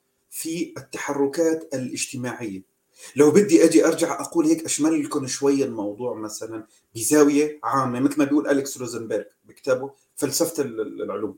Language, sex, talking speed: Arabic, male, 125 wpm